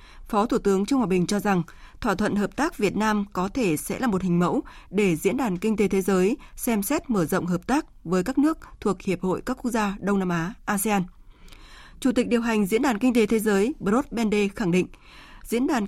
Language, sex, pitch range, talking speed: Vietnamese, female, 195-245 Hz, 240 wpm